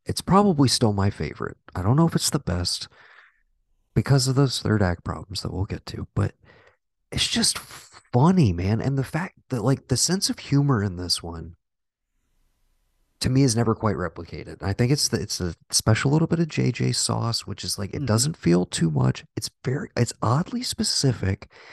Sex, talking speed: male, 190 wpm